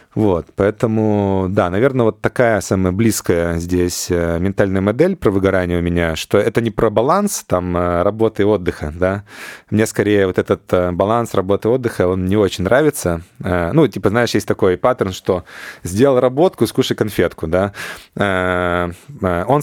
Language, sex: Russian, male